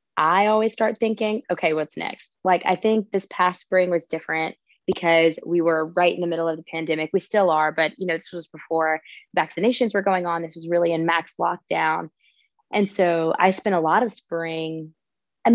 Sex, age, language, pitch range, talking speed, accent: female, 20-39, English, 160-185 Hz, 205 wpm, American